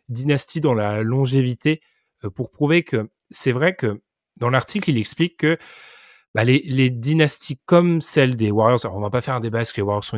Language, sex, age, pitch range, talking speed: French, male, 30-49, 115-155 Hz, 210 wpm